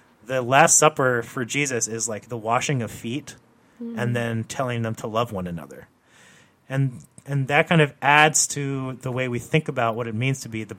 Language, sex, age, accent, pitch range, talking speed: English, male, 30-49, American, 115-140 Hz, 205 wpm